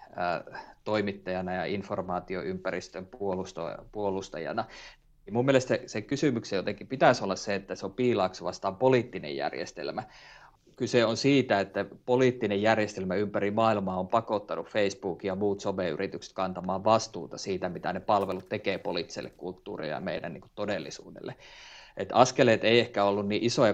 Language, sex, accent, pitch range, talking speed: Finnish, male, native, 95-115 Hz, 140 wpm